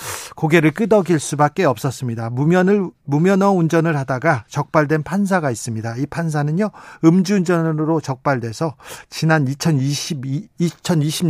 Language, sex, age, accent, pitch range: Korean, male, 40-59, native, 135-185 Hz